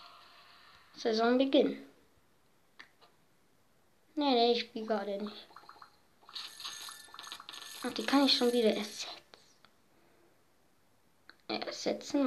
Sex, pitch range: female, 215-270 Hz